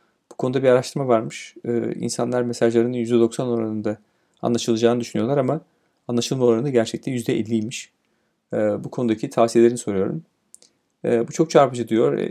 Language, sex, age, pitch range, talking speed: Turkish, male, 40-59, 110-125 Hz, 130 wpm